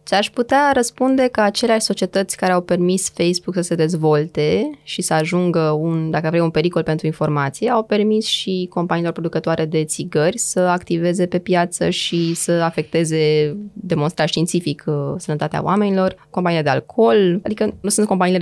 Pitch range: 155-185 Hz